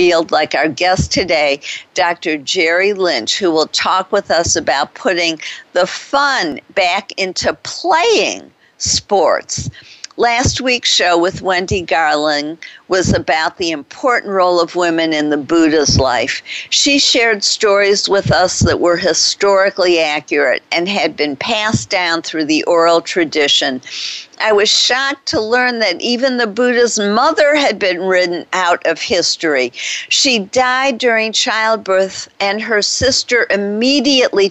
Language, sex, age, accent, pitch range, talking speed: English, female, 50-69, American, 175-245 Hz, 135 wpm